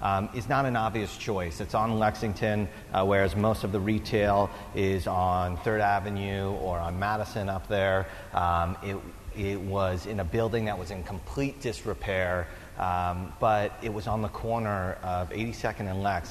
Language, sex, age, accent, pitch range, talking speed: English, male, 30-49, American, 95-110 Hz, 175 wpm